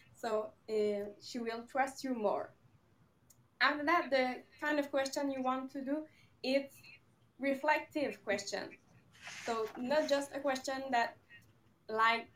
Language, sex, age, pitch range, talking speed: English, female, 20-39, 215-265 Hz, 130 wpm